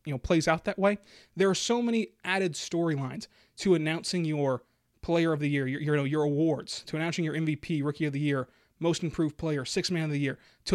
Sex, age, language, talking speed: male, 20-39, English, 230 wpm